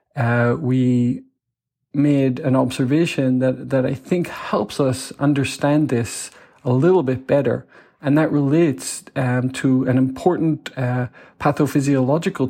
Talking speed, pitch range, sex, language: 125 wpm, 125-145 Hz, male, English